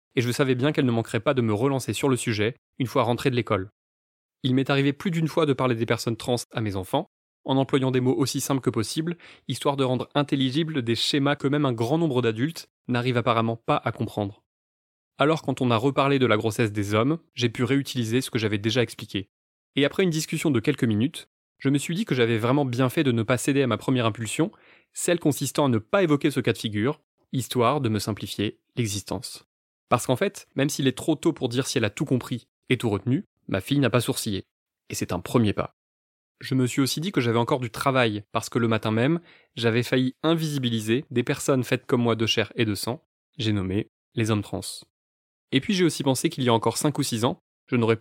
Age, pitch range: 20-39, 115-145 Hz